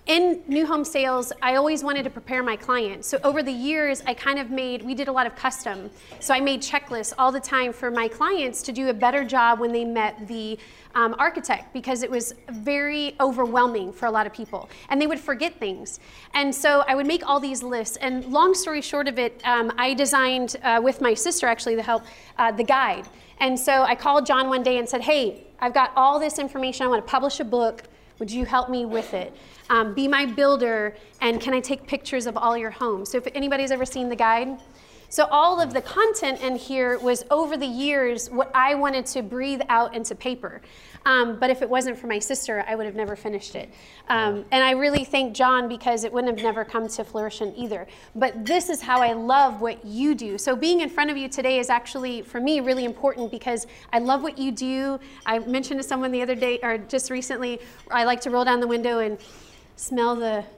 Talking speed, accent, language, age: 230 wpm, American, English, 30-49